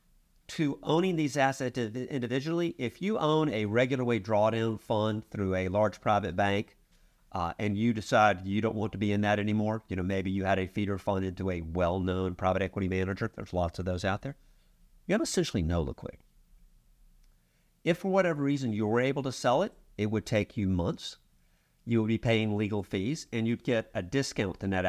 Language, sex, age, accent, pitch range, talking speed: English, male, 50-69, American, 95-140 Hz, 200 wpm